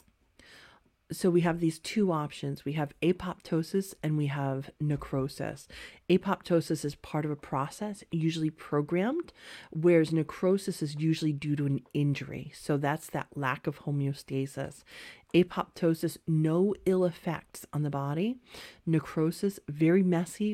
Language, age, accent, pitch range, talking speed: English, 40-59, American, 145-175 Hz, 130 wpm